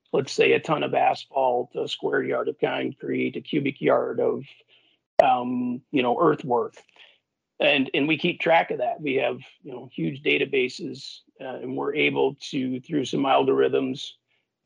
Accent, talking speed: American, 165 wpm